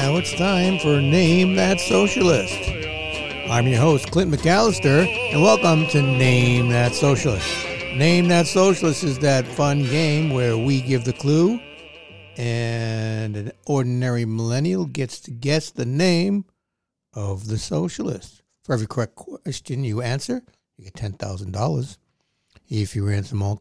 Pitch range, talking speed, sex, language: 115-155 Hz, 140 wpm, male, English